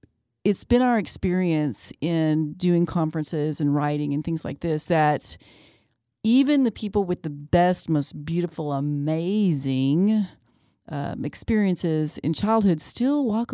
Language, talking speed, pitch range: English, 130 wpm, 145-200 Hz